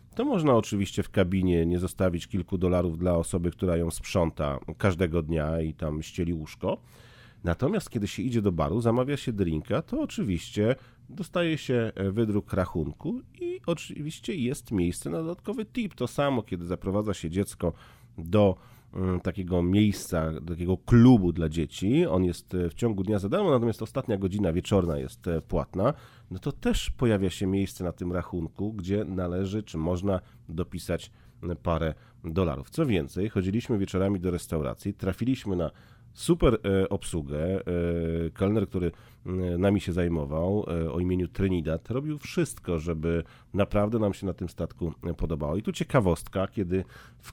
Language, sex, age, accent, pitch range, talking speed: Polish, male, 40-59, native, 85-120 Hz, 145 wpm